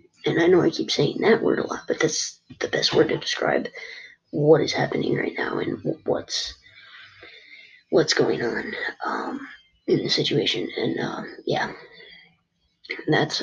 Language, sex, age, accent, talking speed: English, female, 20-39, American, 155 wpm